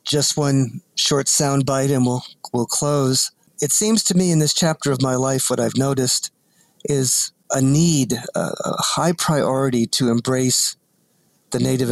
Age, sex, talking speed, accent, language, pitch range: 50-69, male, 160 wpm, American, English, 125-140 Hz